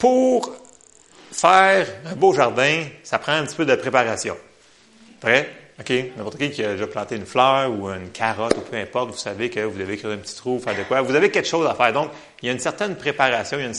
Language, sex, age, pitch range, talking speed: French, male, 30-49, 110-160 Hz, 250 wpm